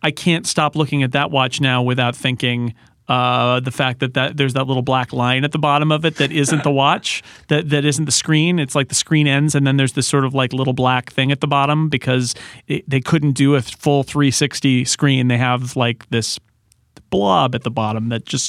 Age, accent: 40-59, American